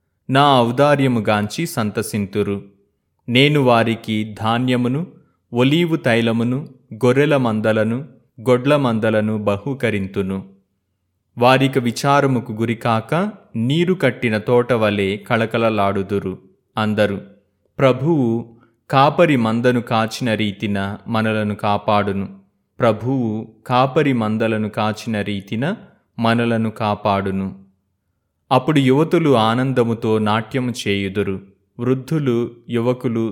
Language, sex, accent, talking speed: Telugu, male, native, 75 wpm